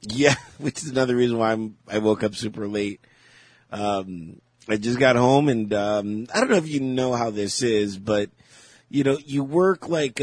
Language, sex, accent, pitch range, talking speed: English, male, American, 105-135 Hz, 195 wpm